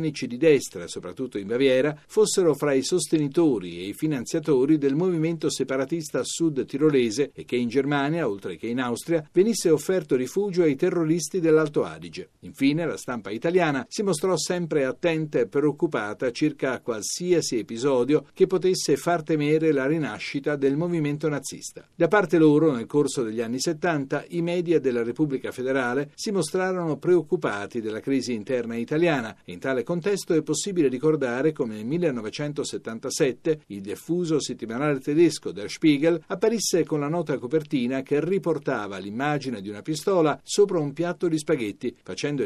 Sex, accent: male, native